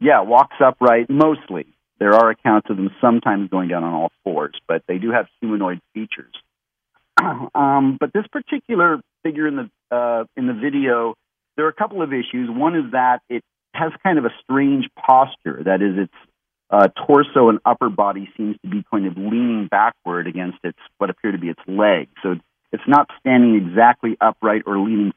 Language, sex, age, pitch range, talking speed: English, male, 50-69, 100-125 Hz, 190 wpm